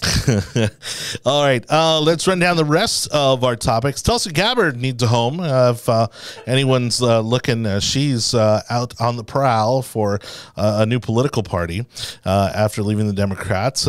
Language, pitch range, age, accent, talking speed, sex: English, 105-135 Hz, 30-49, American, 175 wpm, male